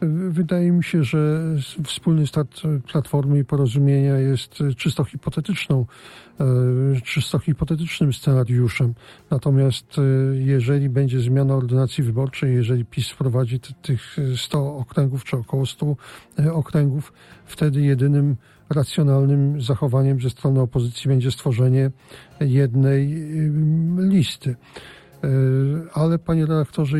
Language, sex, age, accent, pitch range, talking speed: Polish, male, 40-59, native, 130-150 Hz, 100 wpm